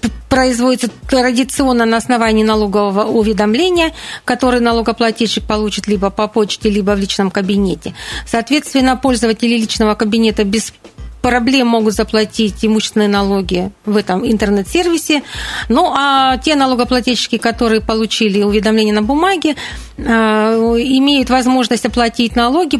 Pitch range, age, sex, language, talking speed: 220-255 Hz, 40-59, female, Russian, 110 wpm